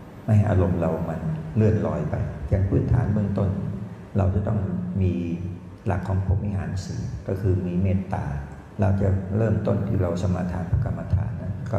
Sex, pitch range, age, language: male, 90-100 Hz, 60-79, Thai